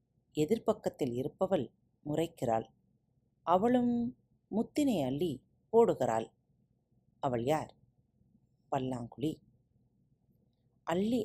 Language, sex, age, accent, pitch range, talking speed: Tamil, female, 30-49, native, 140-235 Hz, 60 wpm